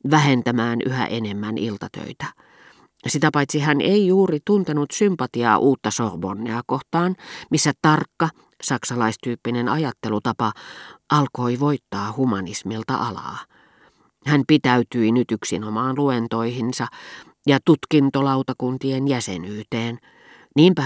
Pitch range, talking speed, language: 115-145 Hz, 90 wpm, Finnish